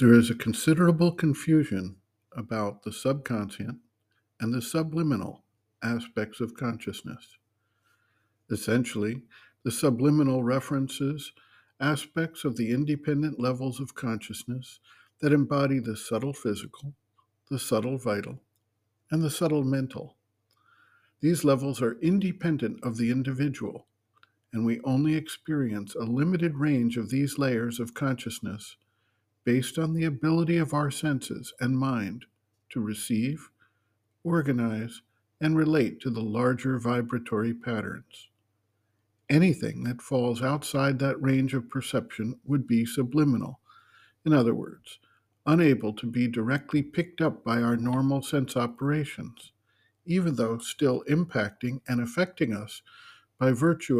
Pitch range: 110-145 Hz